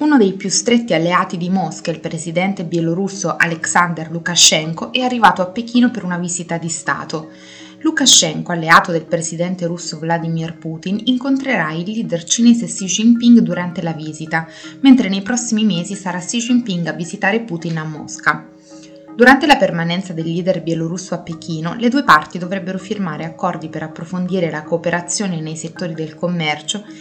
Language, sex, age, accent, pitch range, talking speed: Italian, female, 20-39, native, 165-210 Hz, 160 wpm